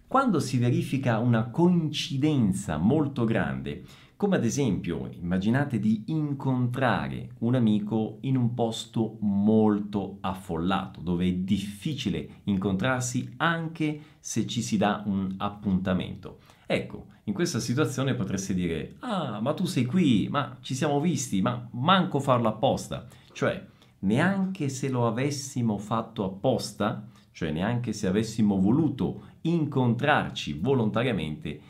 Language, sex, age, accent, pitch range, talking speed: Italian, male, 50-69, native, 105-150 Hz, 120 wpm